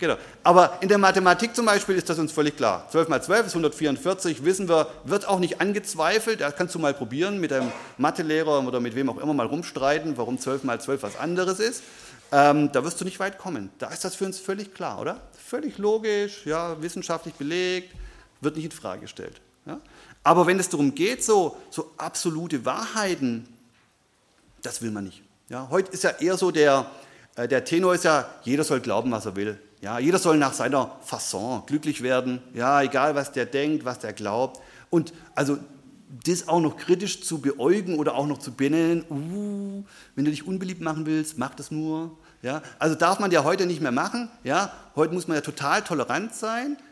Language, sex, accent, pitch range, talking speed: German, male, German, 140-185 Hz, 195 wpm